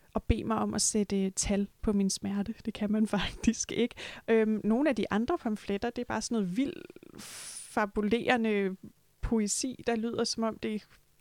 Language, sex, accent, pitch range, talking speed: Danish, female, native, 210-250 Hz, 180 wpm